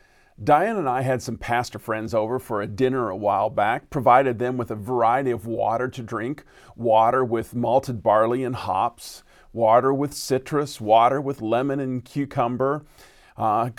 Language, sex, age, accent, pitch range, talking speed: English, male, 40-59, American, 120-170 Hz, 165 wpm